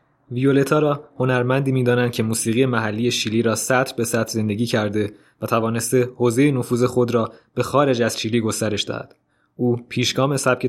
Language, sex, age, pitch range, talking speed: Persian, male, 20-39, 115-130 Hz, 165 wpm